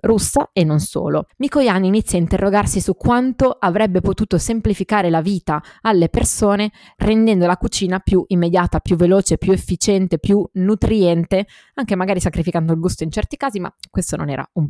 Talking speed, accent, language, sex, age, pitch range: 165 wpm, native, Italian, female, 20-39, 160-195 Hz